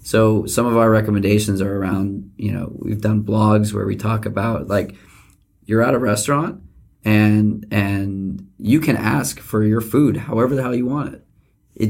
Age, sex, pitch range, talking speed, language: 20-39, male, 100-110 Hz, 180 wpm, English